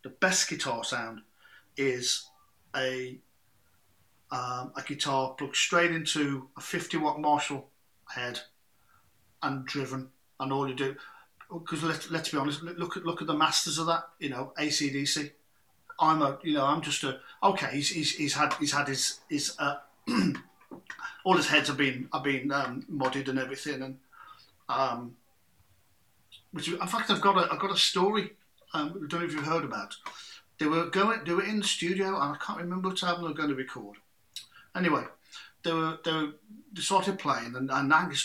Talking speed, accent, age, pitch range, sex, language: 185 wpm, British, 40-59, 135-180 Hz, male, English